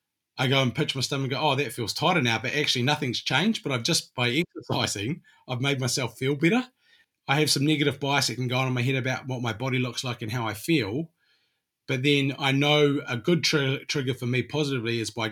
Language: English